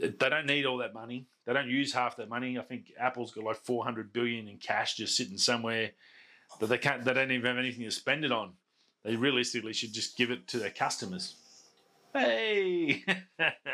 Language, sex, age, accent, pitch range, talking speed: English, male, 30-49, Australian, 115-135 Hz, 205 wpm